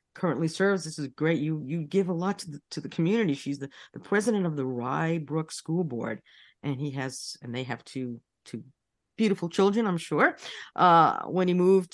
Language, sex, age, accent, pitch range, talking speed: English, female, 50-69, American, 140-170 Hz, 200 wpm